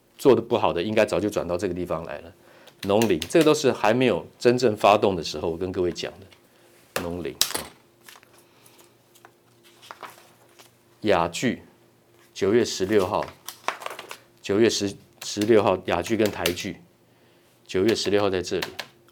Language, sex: Chinese, male